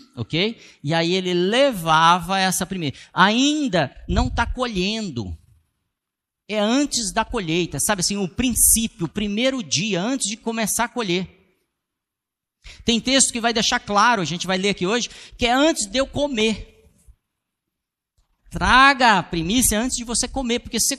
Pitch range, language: 155-235 Hz, Portuguese